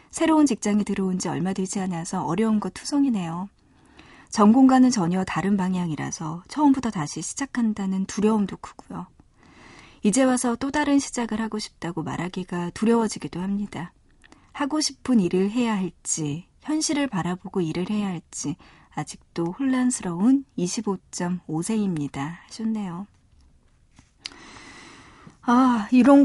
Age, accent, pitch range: 40-59, native, 180-250 Hz